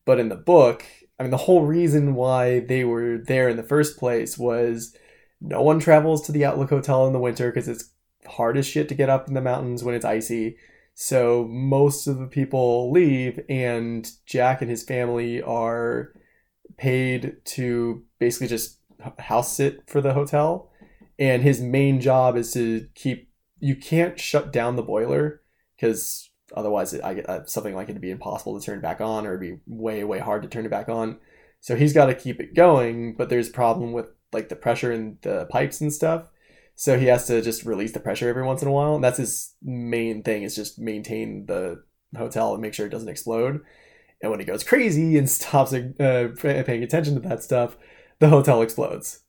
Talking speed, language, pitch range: 205 wpm, English, 115-140 Hz